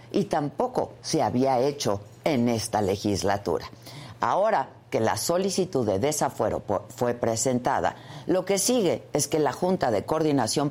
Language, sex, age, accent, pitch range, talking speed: Spanish, female, 50-69, Mexican, 115-175 Hz, 140 wpm